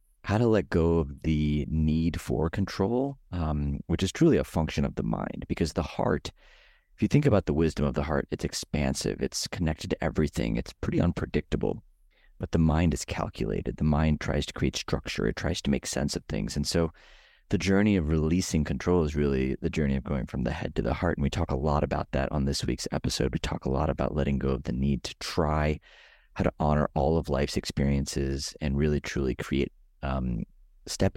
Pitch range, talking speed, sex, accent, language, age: 70-85 Hz, 215 wpm, male, American, English, 30-49